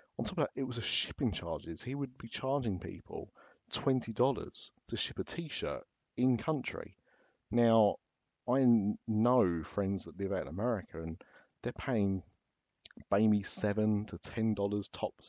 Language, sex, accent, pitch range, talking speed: English, male, British, 95-120 Hz, 155 wpm